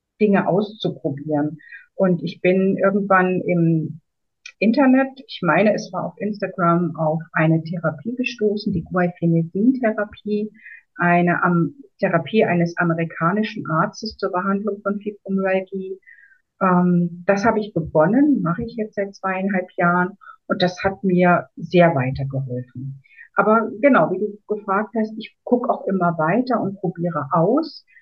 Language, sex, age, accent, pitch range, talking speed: German, female, 50-69, German, 170-215 Hz, 130 wpm